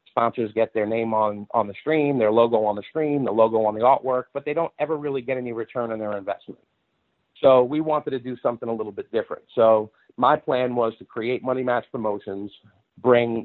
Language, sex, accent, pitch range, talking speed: English, male, American, 105-125 Hz, 220 wpm